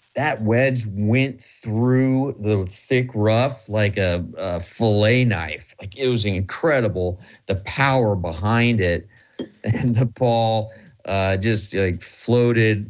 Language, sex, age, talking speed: English, male, 30-49, 125 wpm